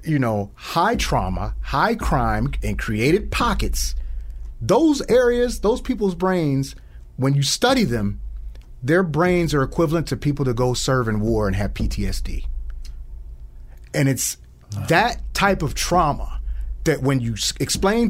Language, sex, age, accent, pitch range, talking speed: English, male, 30-49, American, 95-145 Hz, 140 wpm